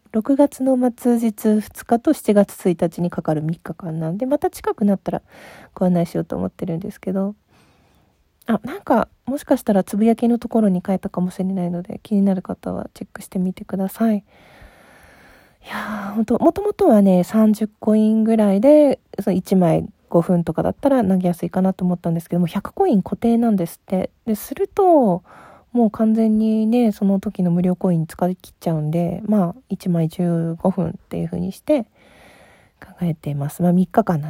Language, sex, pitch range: Japanese, female, 175-220 Hz